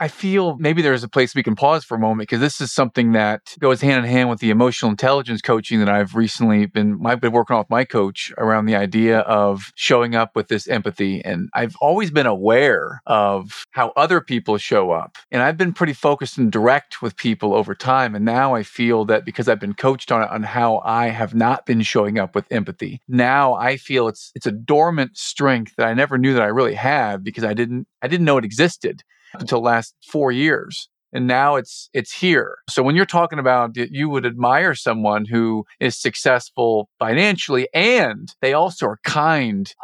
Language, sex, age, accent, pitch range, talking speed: English, male, 40-59, American, 115-145 Hz, 210 wpm